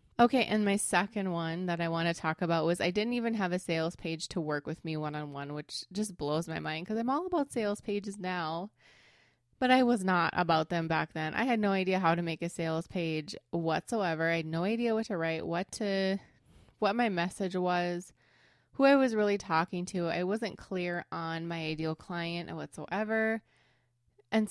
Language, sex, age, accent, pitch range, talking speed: English, female, 20-39, American, 165-200 Hz, 205 wpm